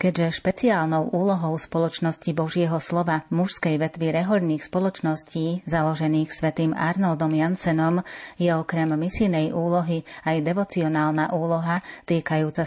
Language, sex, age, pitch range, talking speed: Slovak, female, 30-49, 155-175 Hz, 105 wpm